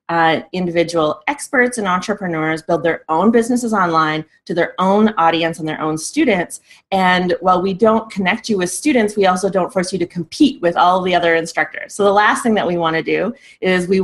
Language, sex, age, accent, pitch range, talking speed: English, female, 30-49, American, 170-220 Hz, 210 wpm